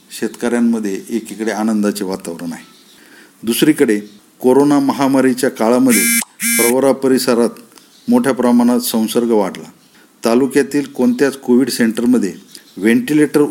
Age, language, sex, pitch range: 50-69, Marathi, male, 115-140 Hz